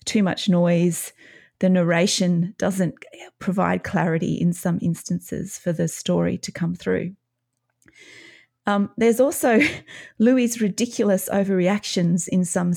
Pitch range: 175-210 Hz